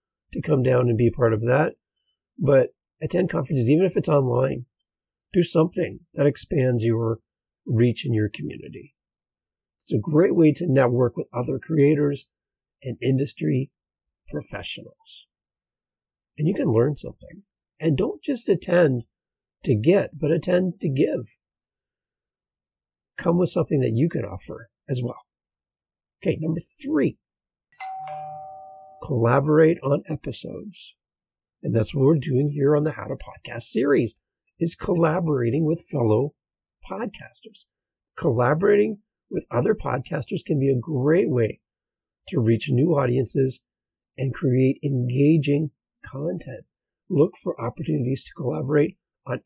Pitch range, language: 130-170 Hz, English